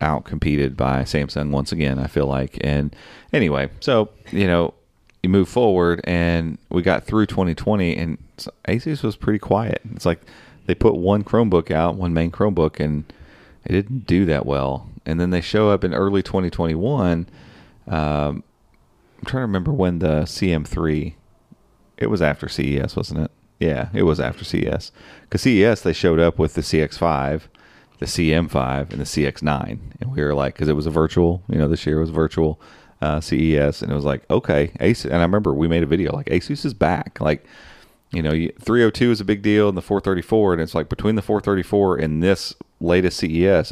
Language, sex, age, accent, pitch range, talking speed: English, male, 30-49, American, 75-95 Hz, 190 wpm